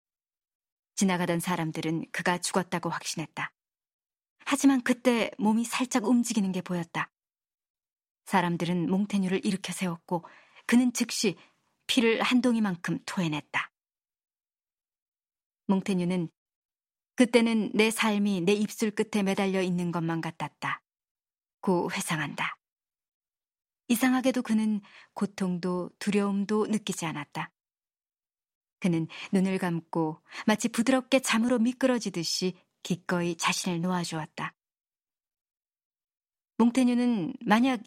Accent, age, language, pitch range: native, 30-49, Korean, 175-225 Hz